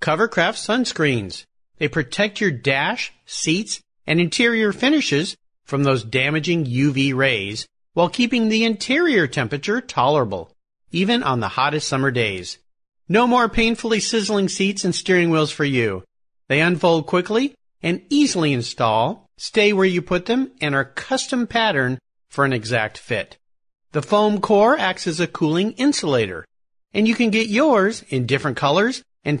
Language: English